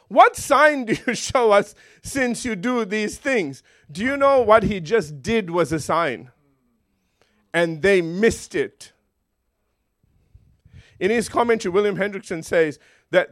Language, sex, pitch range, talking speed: English, male, 170-230 Hz, 145 wpm